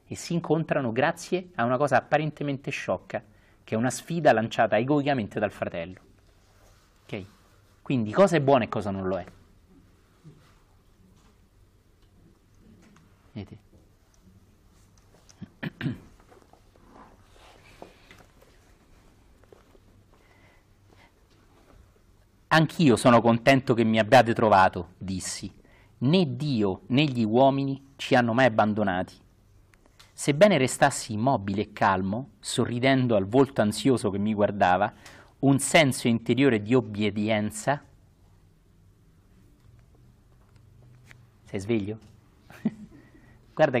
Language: Italian